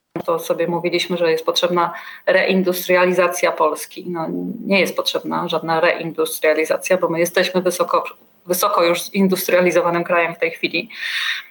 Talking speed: 125 wpm